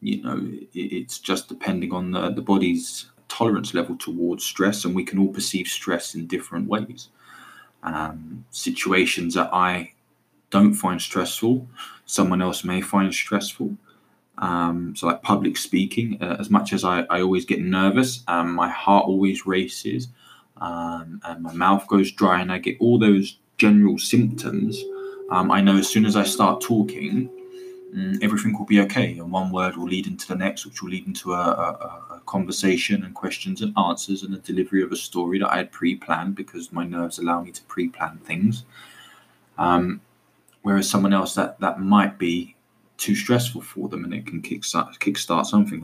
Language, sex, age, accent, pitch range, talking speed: English, male, 20-39, British, 90-105 Hz, 180 wpm